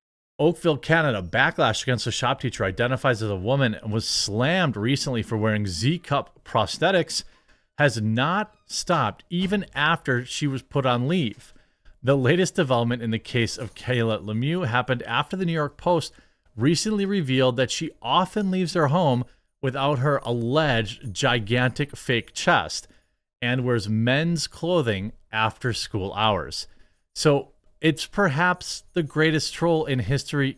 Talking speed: 145 wpm